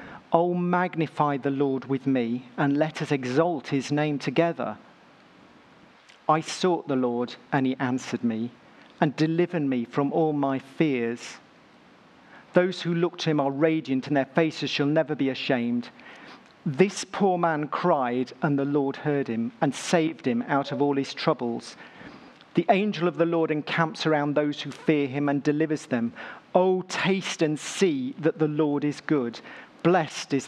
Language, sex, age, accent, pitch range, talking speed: English, male, 40-59, British, 135-175 Hz, 165 wpm